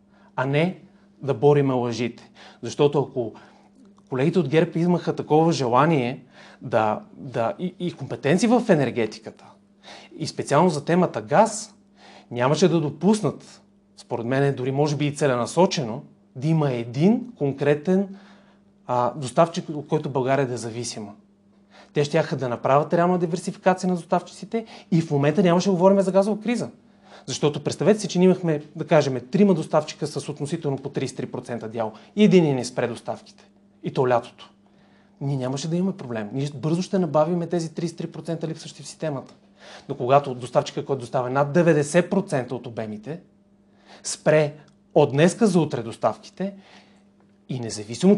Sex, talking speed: male, 145 wpm